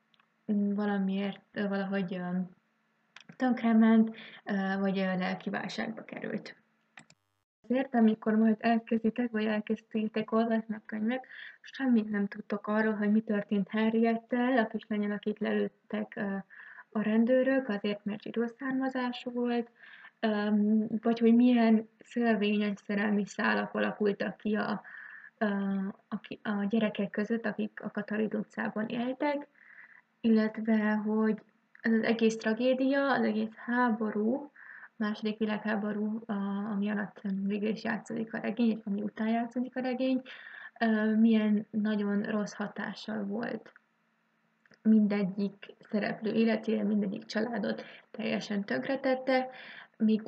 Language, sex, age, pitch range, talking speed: Hungarian, female, 20-39, 210-230 Hz, 100 wpm